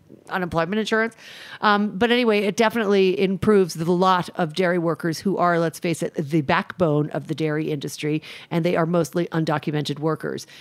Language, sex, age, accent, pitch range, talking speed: English, female, 50-69, American, 160-205 Hz, 170 wpm